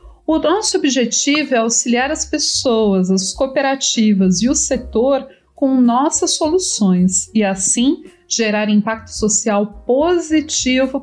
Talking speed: 115 wpm